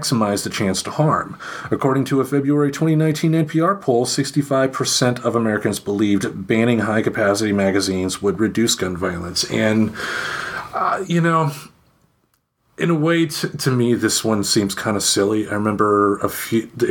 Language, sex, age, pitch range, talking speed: English, male, 40-59, 100-130 Hz, 155 wpm